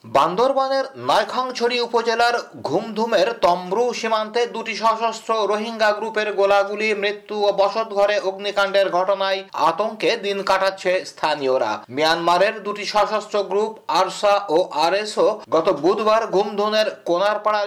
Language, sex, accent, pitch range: Bengali, male, native, 185-210 Hz